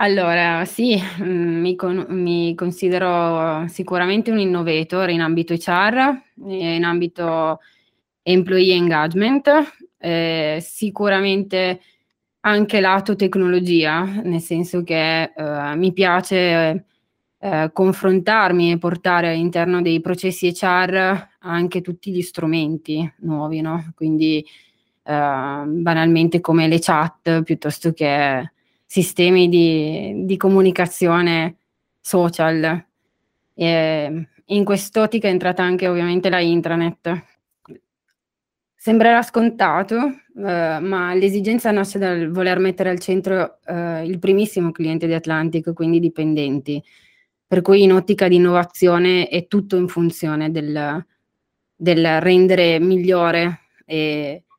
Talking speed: 110 wpm